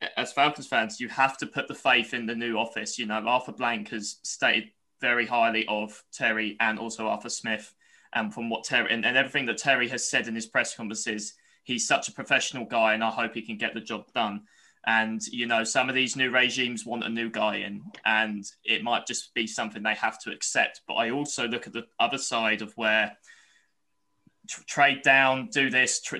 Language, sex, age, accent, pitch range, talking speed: English, male, 20-39, British, 110-125 Hz, 220 wpm